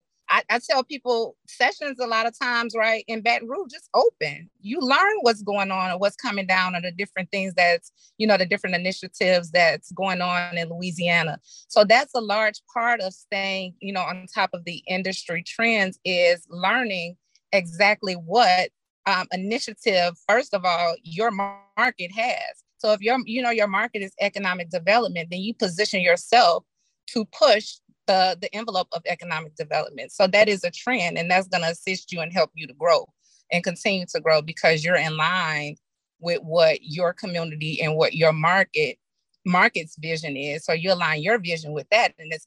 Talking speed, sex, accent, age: 185 wpm, female, American, 30-49